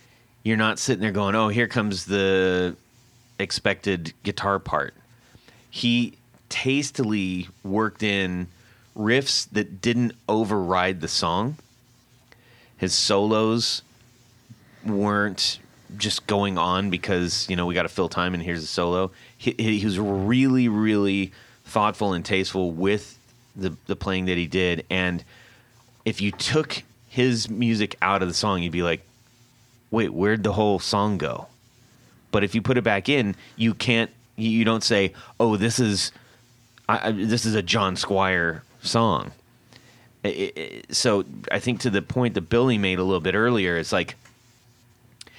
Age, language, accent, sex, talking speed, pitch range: 30-49, English, American, male, 150 wpm, 95-120 Hz